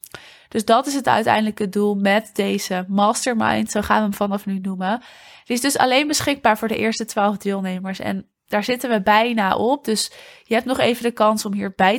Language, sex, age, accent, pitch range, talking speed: Dutch, female, 20-39, Dutch, 195-230 Hz, 205 wpm